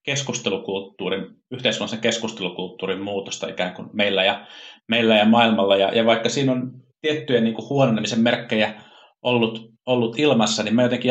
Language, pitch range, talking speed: Finnish, 105-125 Hz, 140 wpm